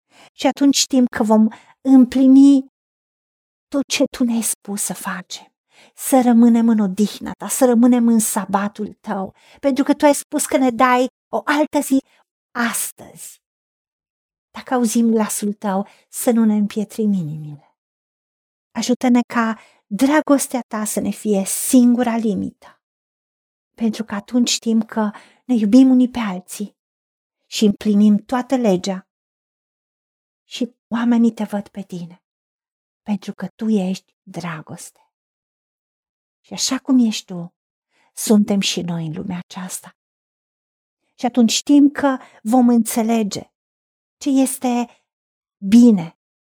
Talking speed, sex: 125 wpm, female